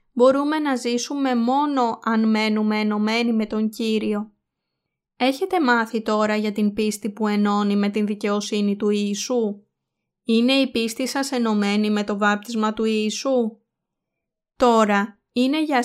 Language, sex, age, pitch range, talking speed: Greek, female, 20-39, 215-250 Hz, 135 wpm